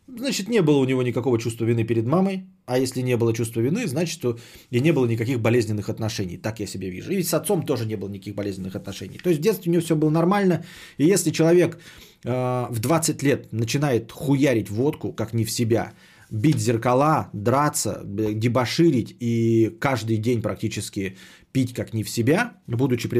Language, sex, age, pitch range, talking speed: Bulgarian, male, 30-49, 110-145 Hz, 190 wpm